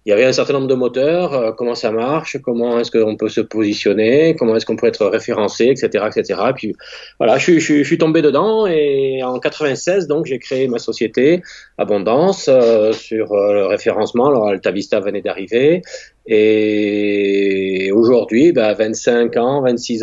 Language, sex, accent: French, male, French